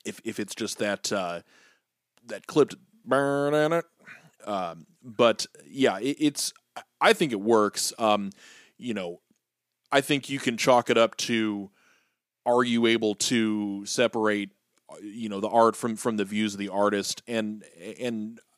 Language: English